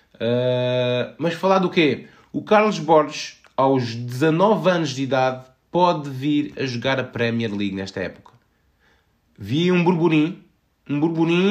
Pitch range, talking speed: 105-145 Hz, 140 wpm